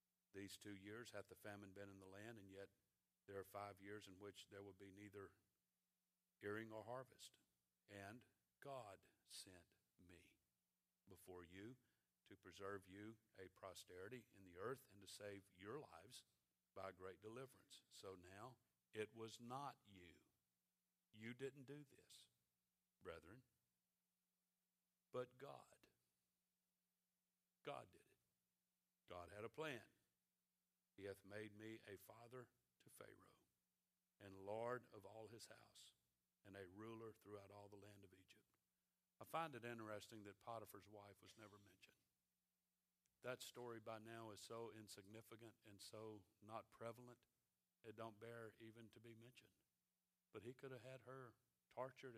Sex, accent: male, American